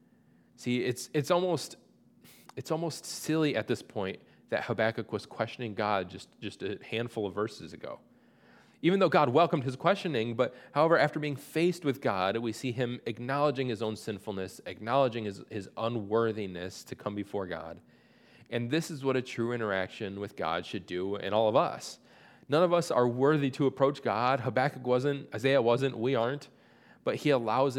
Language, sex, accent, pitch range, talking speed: English, male, American, 100-135 Hz, 175 wpm